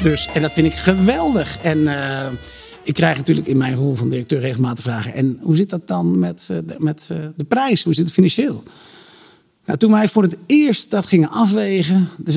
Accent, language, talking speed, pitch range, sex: Dutch, Dutch, 215 wpm, 120-165 Hz, male